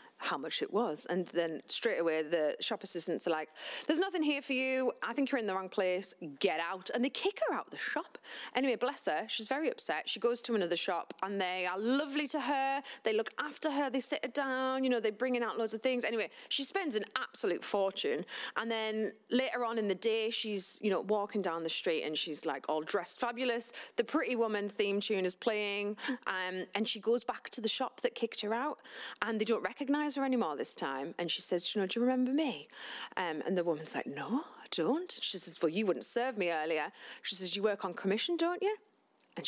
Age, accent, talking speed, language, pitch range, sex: 30-49, British, 235 wpm, English, 190-265 Hz, female